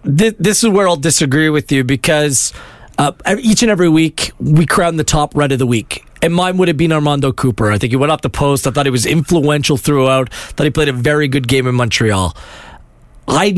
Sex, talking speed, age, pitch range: male, 230 wpm, 40-59, 135-175 Hz